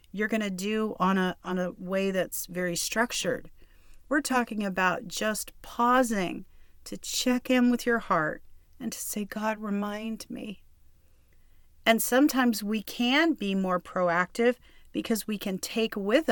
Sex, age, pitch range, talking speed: female, 40-59, 175-220 Hz, 145 wpm